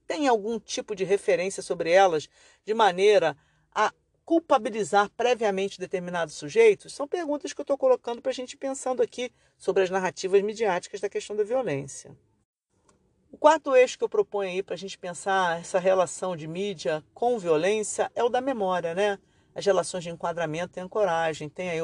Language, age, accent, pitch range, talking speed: Portuguese, 50-69, Brazilian, 180-245 Hz, 175 wpm